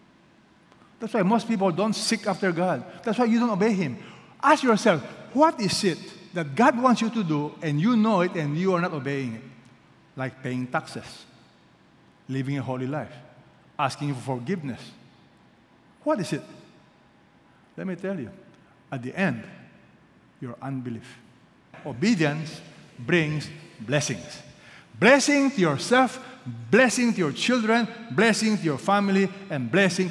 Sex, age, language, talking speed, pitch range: male, 60-79, English, 145 wpm, 145-220 Hz